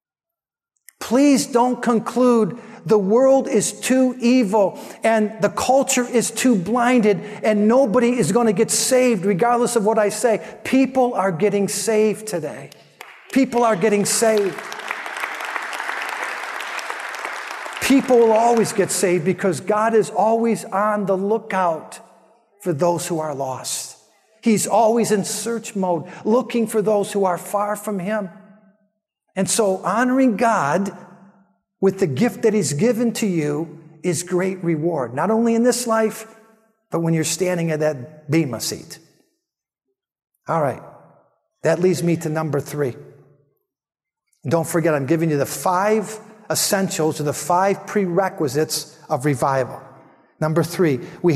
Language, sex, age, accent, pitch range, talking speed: English, male, 50-69, American, 170-230 Hz, 140 wpm